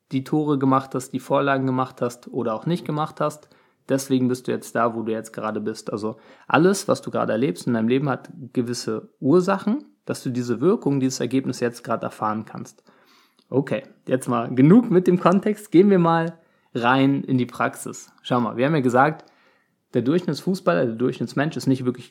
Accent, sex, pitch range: German, male, 125-165 Hz